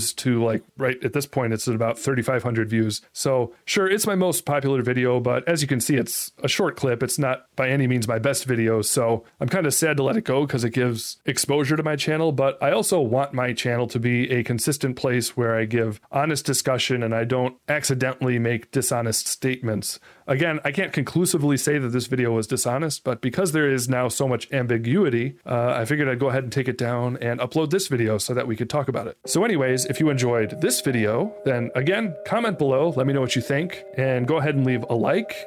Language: English